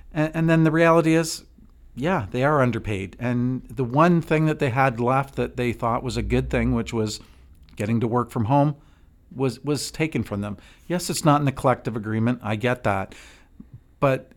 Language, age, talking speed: English, 50-69, 195 wpm